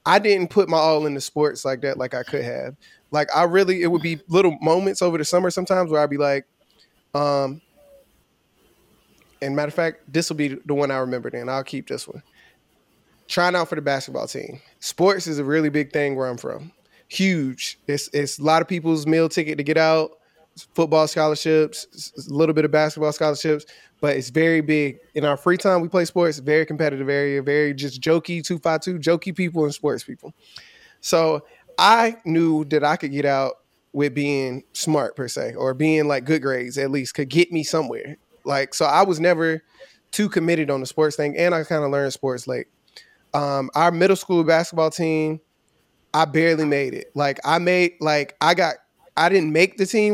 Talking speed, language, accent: 200 wpm, English, American